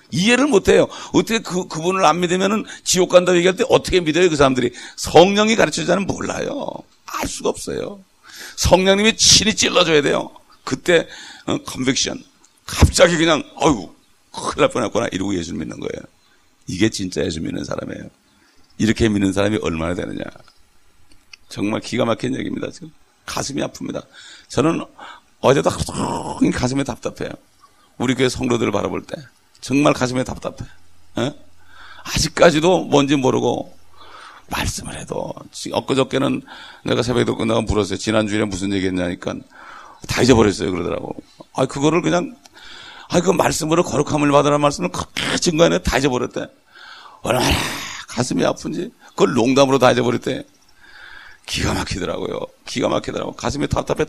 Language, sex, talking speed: English, male, 125 wpm